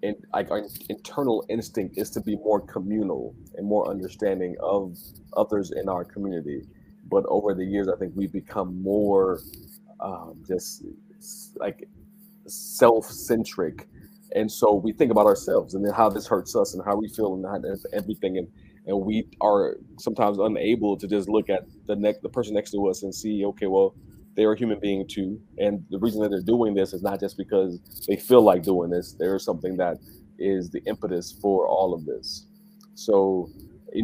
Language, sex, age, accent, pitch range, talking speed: English, male, 30-49, American, 95-110 Hz, 190 wpm